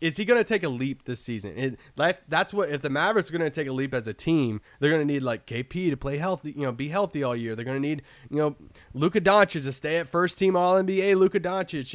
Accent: American